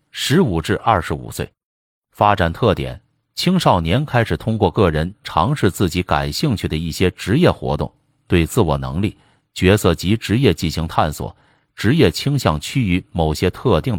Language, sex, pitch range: Chinese, male, 80-120 Hz